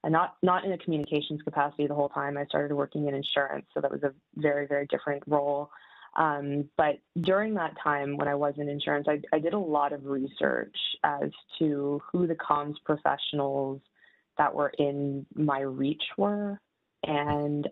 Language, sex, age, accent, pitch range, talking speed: English, female, 20-39, American, 145-160 Hz, 180 wpm